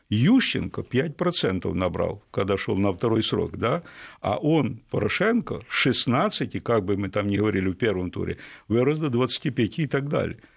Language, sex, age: Russian, male, 50-69